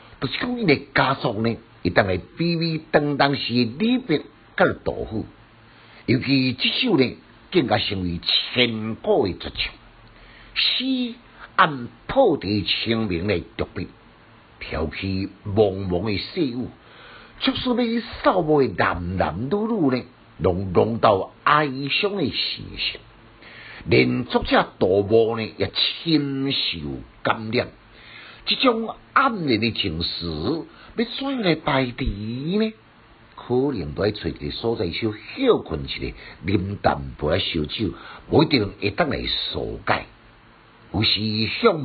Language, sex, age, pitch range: Chinese, male, 50-69, 105-160 Hz